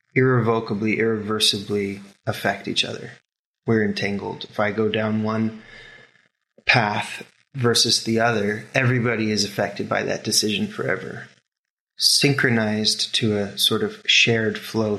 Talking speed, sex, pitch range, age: 120 wpm, male, 105-115 Hz, 20-39